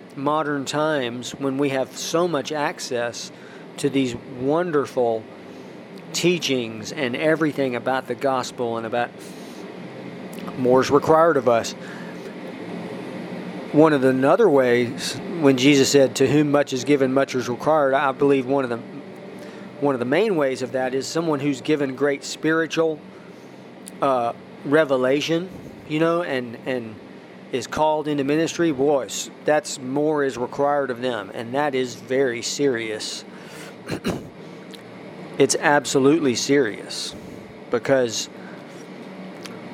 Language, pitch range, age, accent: English, 130-150 Hz, 40-59, American